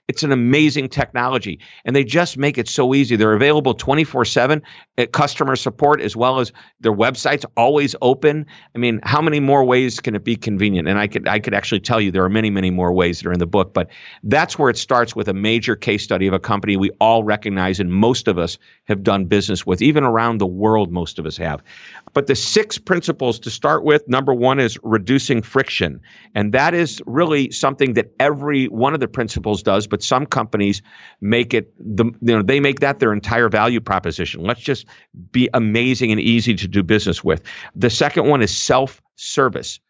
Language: English